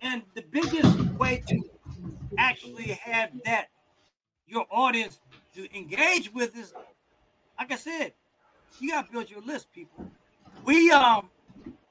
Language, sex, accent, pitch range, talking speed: English, male, American, 155-235 Hz, 125 wpm